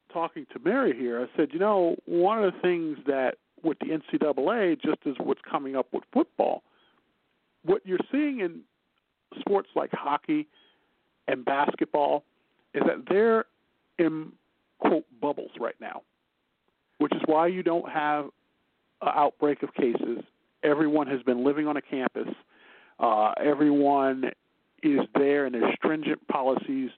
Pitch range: 135-225 Hz